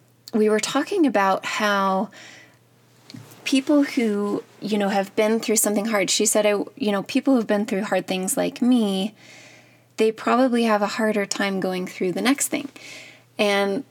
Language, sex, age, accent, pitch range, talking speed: English, female, 20-39, American, 195-235 Hz, 165 wpm